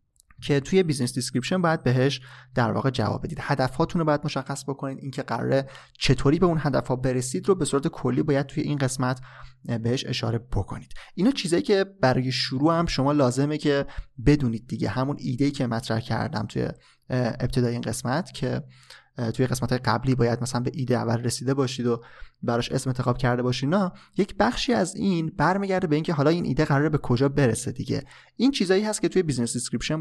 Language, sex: Persian, male